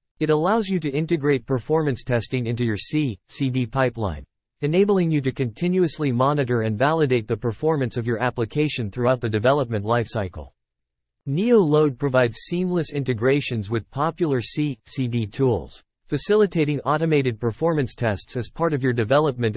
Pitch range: 115-150 Hz